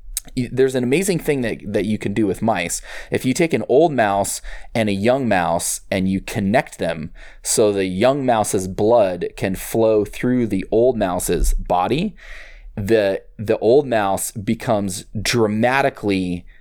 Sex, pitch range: male, 95-120 Hz